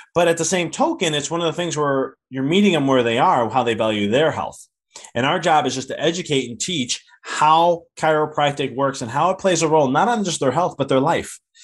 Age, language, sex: 20-39, English, male